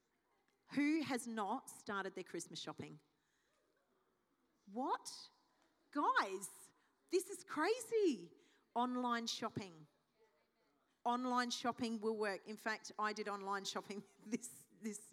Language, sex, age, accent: English, female, 40-59, Australian